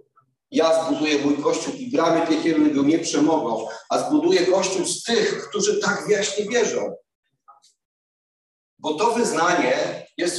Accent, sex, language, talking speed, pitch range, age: native, male, Polish, 135 wpm, 140-205 Hz, 40-59